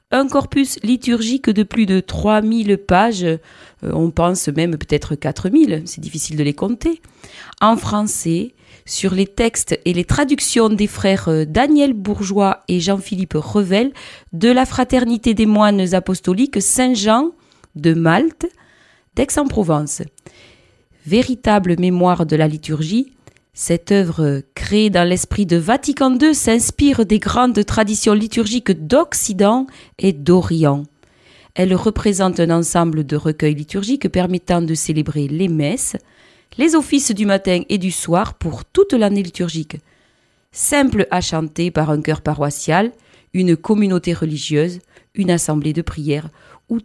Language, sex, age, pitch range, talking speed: French, female, 40-59, 165-225 Hz, 135 wpm